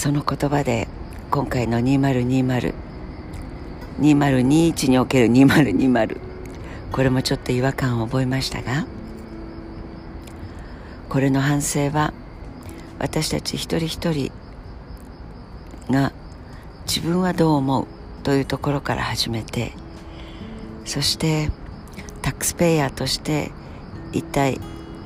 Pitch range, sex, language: 105-145 Hz, female, Japanese